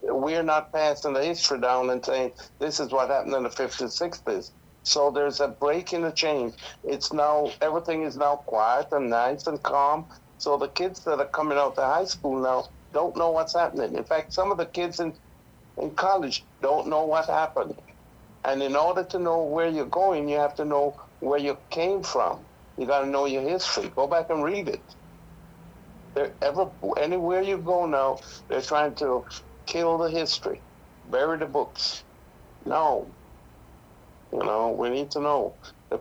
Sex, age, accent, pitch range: male, 60-79, American, 135-160 Hz